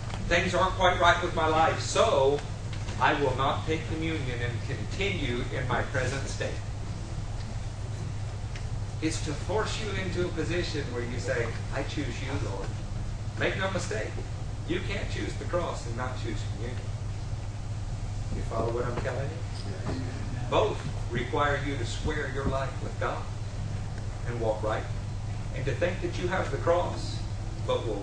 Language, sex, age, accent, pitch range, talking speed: English, male, 40-59, American, 105-115 Hz, 155 wpm